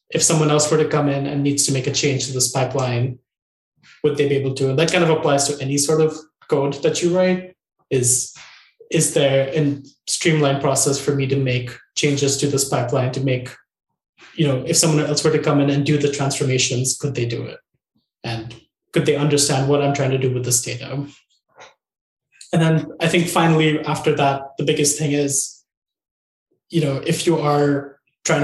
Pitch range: 135-155 Hz